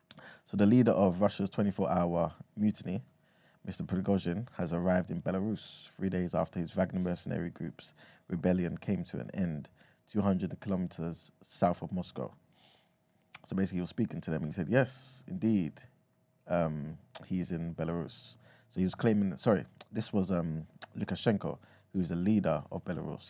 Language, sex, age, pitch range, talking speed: English, male, 20-39, 85-100 Hz, 155 wpm